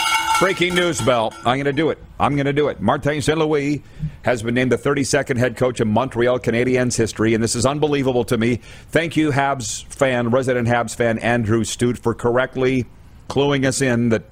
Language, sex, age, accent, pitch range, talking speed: English, male, 40-59, American, 100-140 Hz, 195 wpm